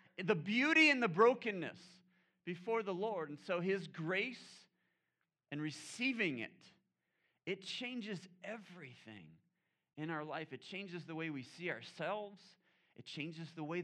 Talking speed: 140 wpm